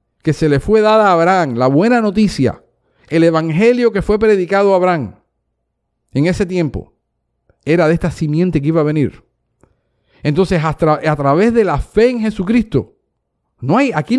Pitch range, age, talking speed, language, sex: 160-230 Hz, 50-69, 160 wpm, Spanish, male